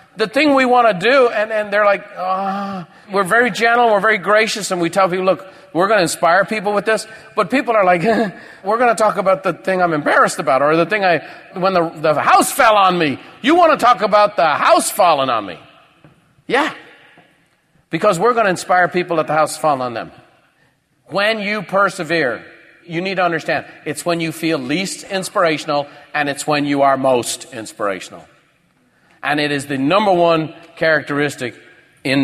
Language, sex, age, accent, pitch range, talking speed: English, male, 50-69, American, 145-195 Hz, 195 wpm